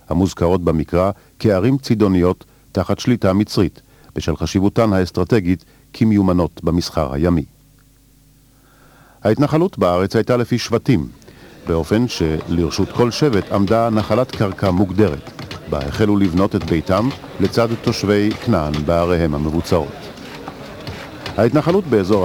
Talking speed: 100 wpm